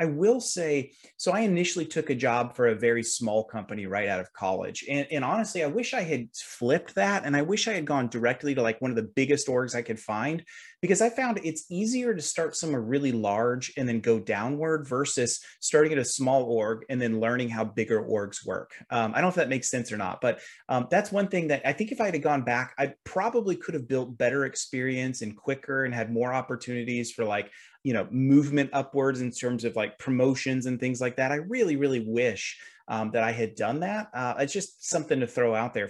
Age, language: 30-49, English